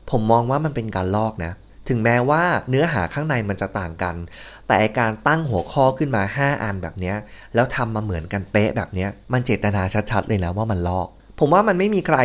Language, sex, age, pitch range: Thai, male, 20-39, 100-130 Hz